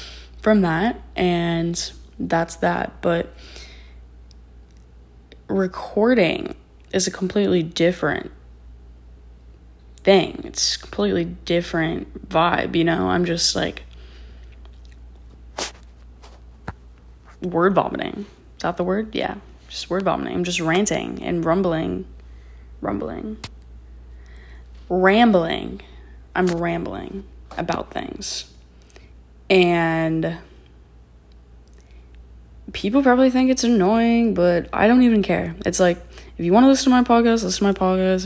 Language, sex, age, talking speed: English, female, 10-29, 105 wpm